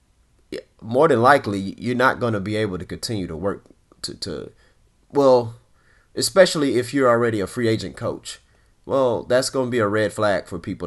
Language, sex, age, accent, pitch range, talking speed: English, male, 30-49, American, 100-125 Hz, 195 wpm